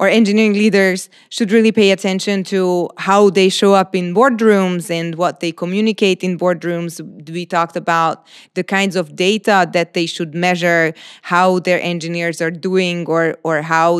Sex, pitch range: female, 170-195 Hz